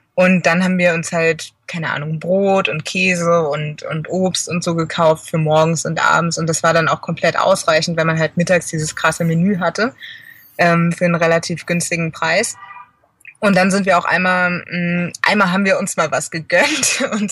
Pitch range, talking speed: 165-190 Hz, 200 wpm